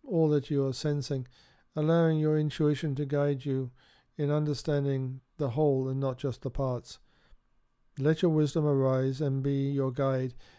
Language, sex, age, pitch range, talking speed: English, male, 50-69, 135-150 Hz, 160 wpm